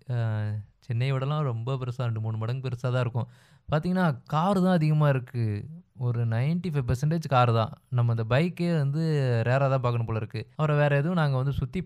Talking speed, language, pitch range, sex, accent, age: 175 wpm, Tamil, 120-150 Hz, male, native, 20-39